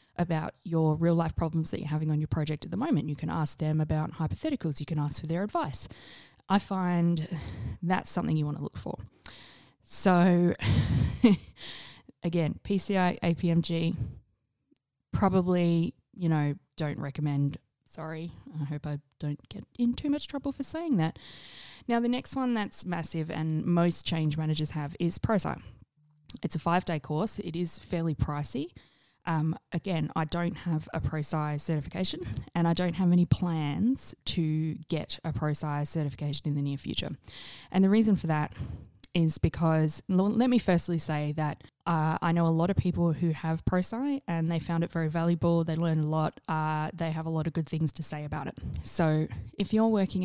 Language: English